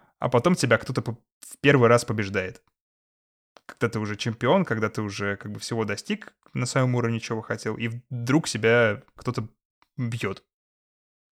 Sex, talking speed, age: male, 155 wpm, 20-39